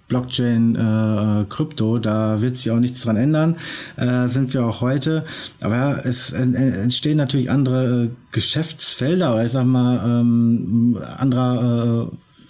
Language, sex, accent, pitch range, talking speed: German, male, German, 115-130 Hz, 140 wpm